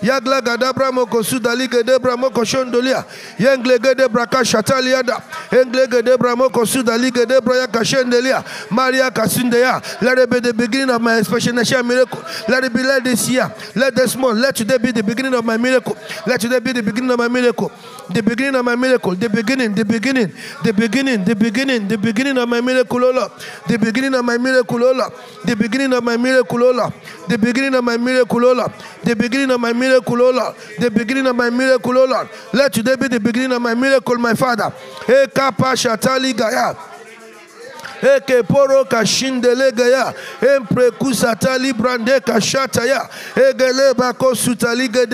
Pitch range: 235-260 Hz